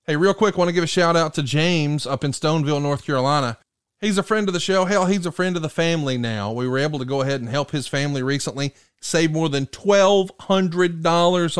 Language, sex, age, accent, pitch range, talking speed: English, male, 30-49, American, 140-190 Hz, 240 wpm